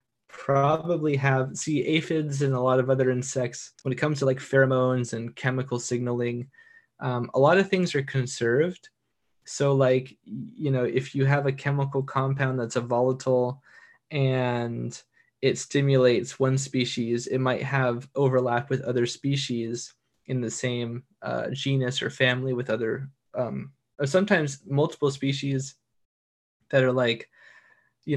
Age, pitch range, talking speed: 20-39, 120-140 Hz, 145 wpm